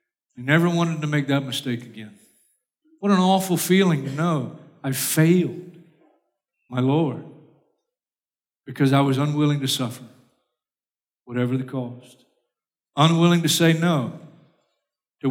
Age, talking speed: 50-69, 125 wpm